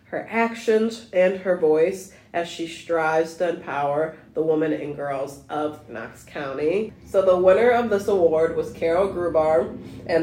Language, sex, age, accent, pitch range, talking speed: English, female, 20-39, American, 155-185 Hz, 160 wpm